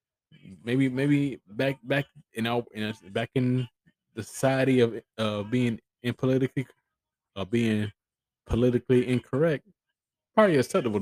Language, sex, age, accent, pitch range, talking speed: English, male, 20-39, American, 95-125 Hz, 120 wpm